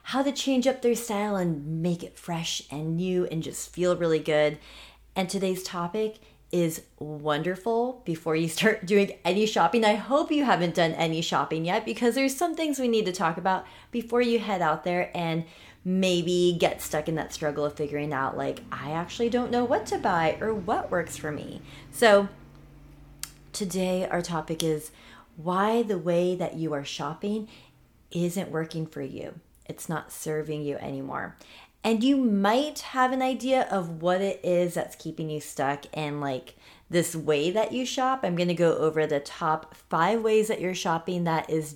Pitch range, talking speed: 155-215 Hz, 185 wpm